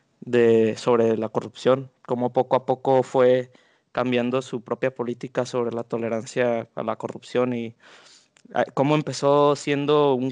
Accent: Mexican